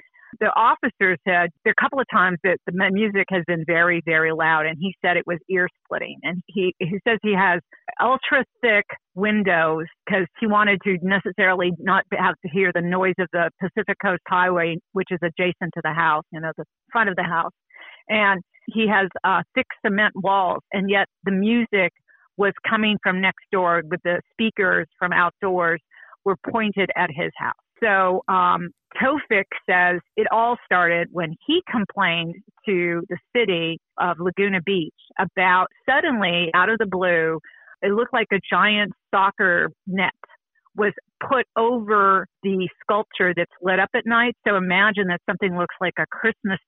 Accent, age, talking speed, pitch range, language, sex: American, 50-69, 170 wpm, 175-210 Hz, English, female